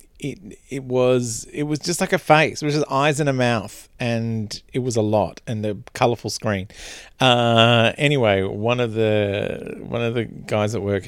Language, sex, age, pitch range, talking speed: English, male, 40-59, 110-155 Hz, 190 wpm